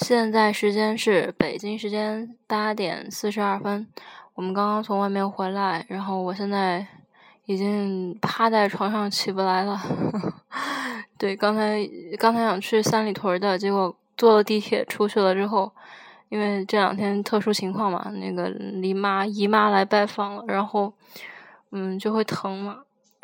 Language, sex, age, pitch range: Chinese, female, 10-29, 195-220 Hz